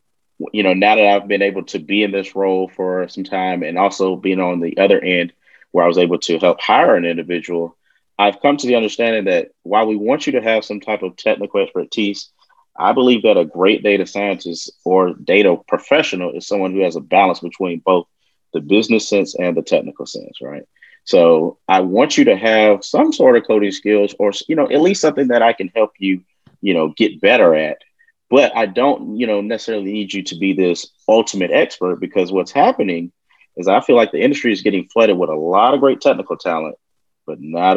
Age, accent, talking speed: 30-49, American, 215 wpm